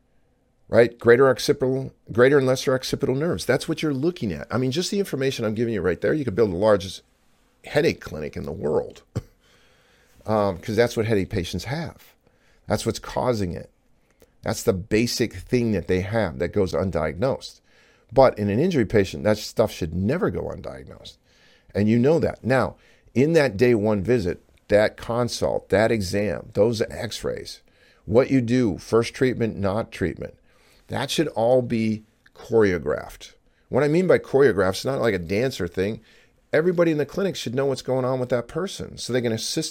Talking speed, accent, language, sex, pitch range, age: 180 wpm, American, English, male, 100-135 Hz, 50-69